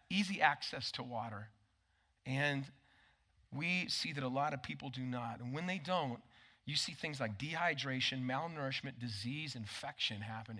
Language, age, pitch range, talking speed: English, 40-59, 115-150 Hz, 155 wpm